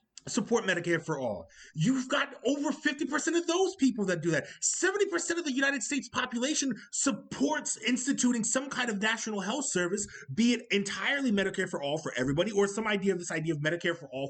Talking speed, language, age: 195 wpm, English, 30-49